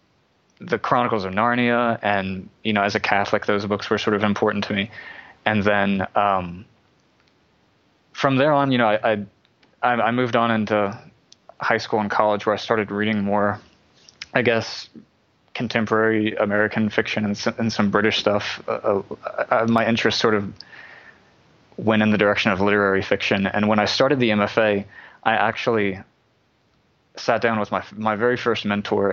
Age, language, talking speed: 20-39, English, 160 wpm